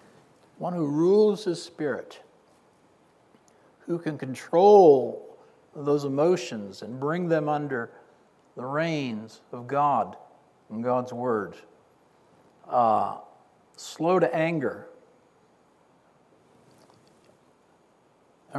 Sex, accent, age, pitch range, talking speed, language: male, American, 60-79, 120-165 Hz, 85 wpm, English